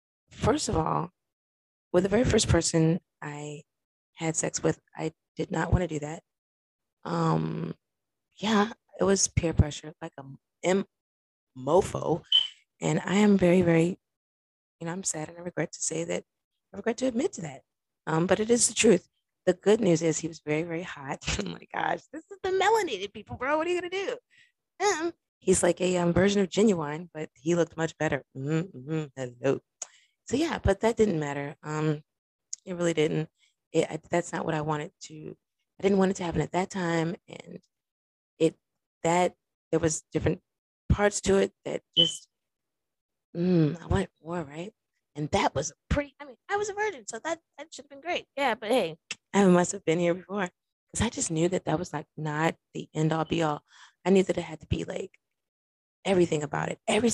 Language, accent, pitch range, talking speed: English, American, 155-200 Hz, 200 wpm